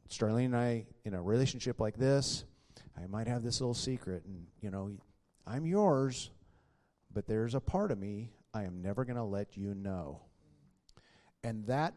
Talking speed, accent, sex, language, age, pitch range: 175 wpm, American, male, English, 40-59, 105-135 Hz